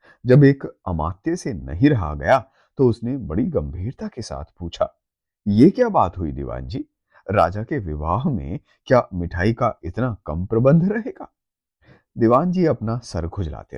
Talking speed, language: 150 wpm, Hindi